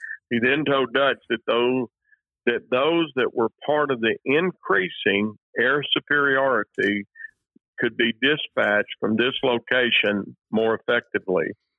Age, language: 50-69, English